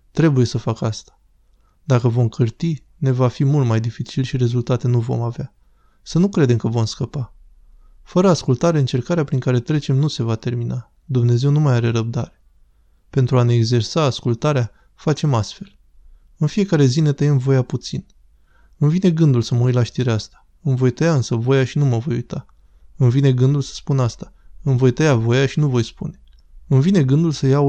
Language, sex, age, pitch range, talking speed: Romanian, male, 20-39, 120-140 Hz, 195 wpm